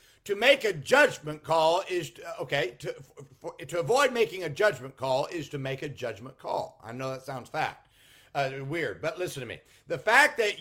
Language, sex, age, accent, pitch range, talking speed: English, male, 50-69, American, 165-250 Hz, 205 wpm